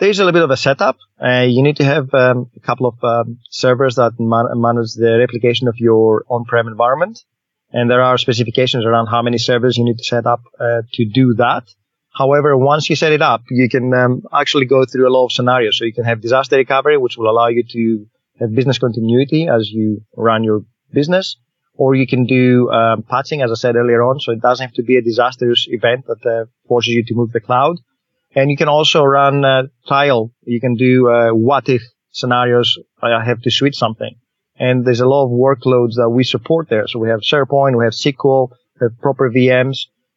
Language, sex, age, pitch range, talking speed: English, male, 30-49, 120-135 Hz, 220 wpm